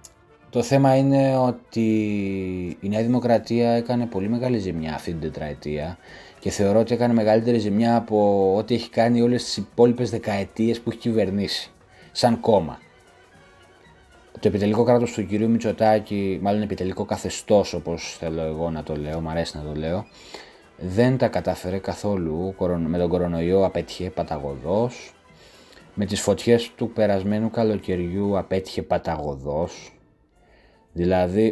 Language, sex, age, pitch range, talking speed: Greek, male, 30-49, 90-115 Hz, 135 wpm